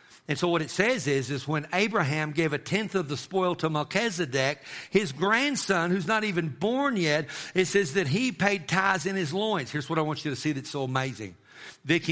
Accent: American